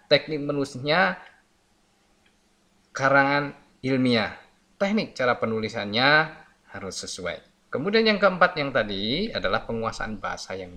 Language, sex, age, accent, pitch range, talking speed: Indonesian, male, 20-39, native, 105-165 Hz, 100 wpm